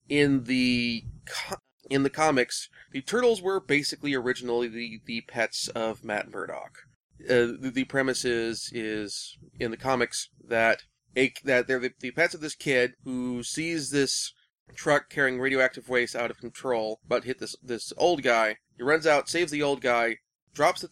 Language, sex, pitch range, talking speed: English, male, 115-140 Hz, 175 wpm